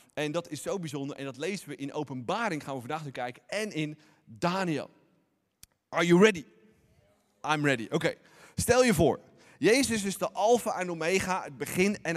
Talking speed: 185 wpm